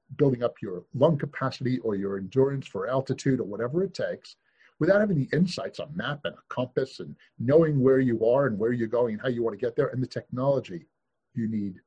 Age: 50-69